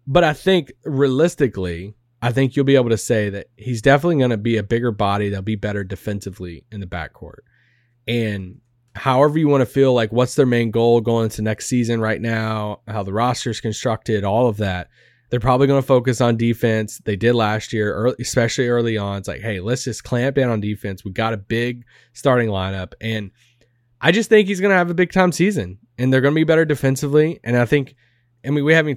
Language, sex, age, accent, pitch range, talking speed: English, male, 20-39, American, 110-135 Hz, 225 wpm